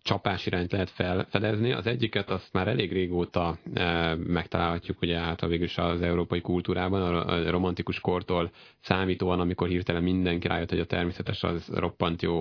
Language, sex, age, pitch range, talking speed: Hungarian, male, 30-49, 85-95 Hz, 160 wpm